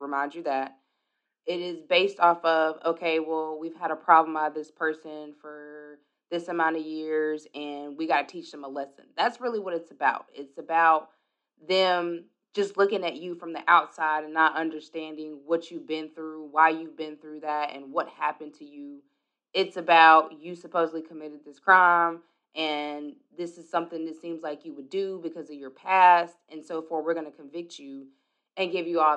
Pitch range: 150-170 Hz